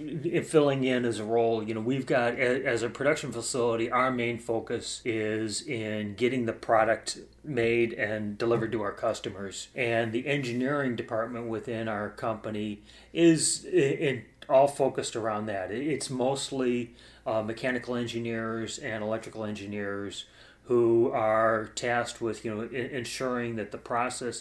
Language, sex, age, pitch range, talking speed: English, male, 30-49, 110-125 Hz, 150 wpm